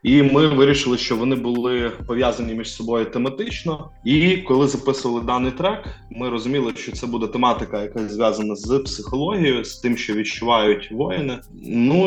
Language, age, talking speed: Ukrainian, 20-39, 155 wpm